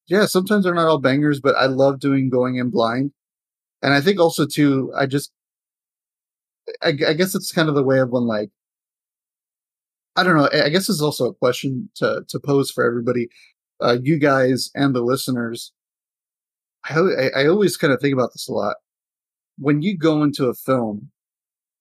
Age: 30-49